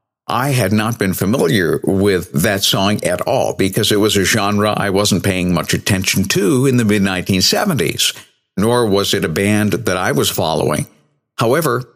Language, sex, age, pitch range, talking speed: English, male, 60-79, 95-125 Hz, 170 wpm